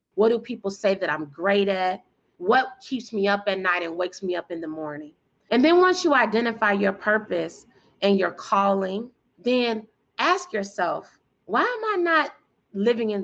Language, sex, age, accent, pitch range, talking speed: English, female, 30-49, American, 205-295 Hz, 180 wpm